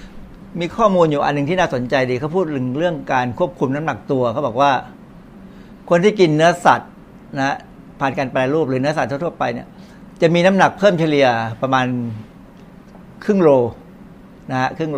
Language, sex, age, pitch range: Thai, male, 60-79, 130-175 Hz